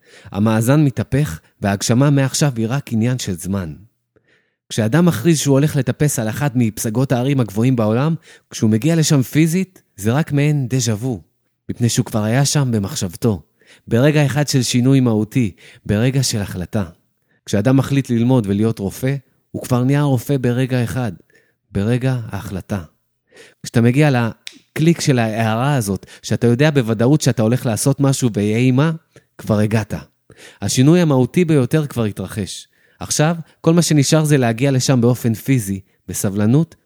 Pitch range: 110-145 Hz